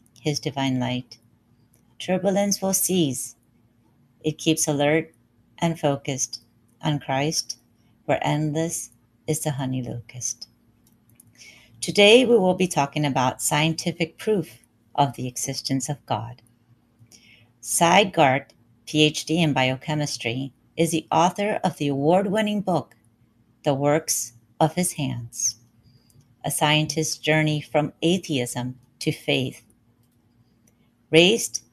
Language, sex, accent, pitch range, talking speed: English, female, American, 120-165 Hz, 110 wpm